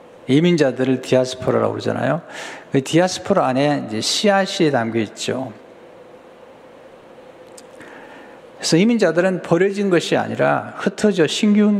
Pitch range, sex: 130-200 Hz, male